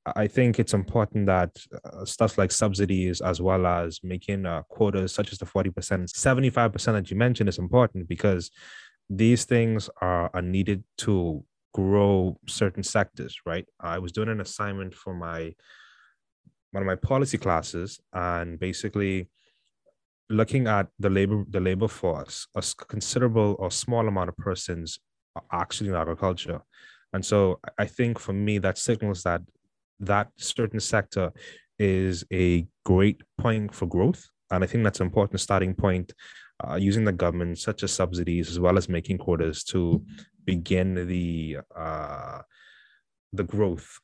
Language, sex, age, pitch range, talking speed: English, male, 20-39, 90-110 Hz, 150 wpm